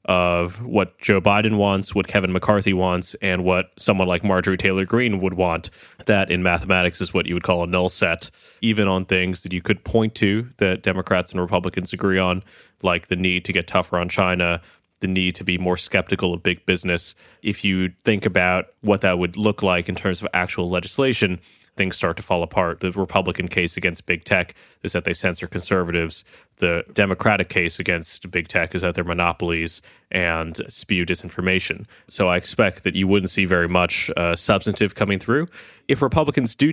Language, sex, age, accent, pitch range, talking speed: English, male, 20-39, American, 90-100 Hz, 195 wpm